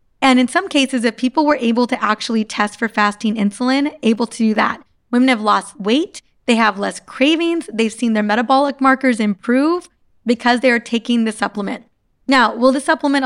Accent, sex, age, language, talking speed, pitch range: American, female, 20-39, English, 190 wpm, 215-255 Hz